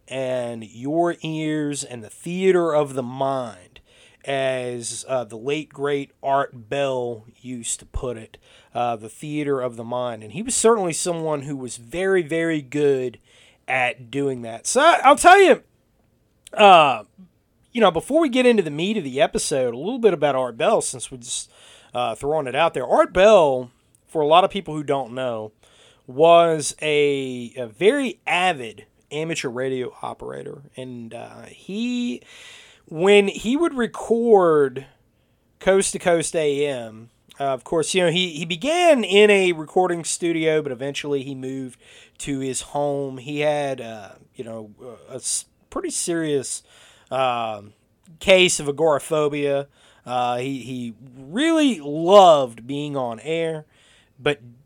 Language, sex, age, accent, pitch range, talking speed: English, male, 30-49, American, 125-175 Hz, 150 wpm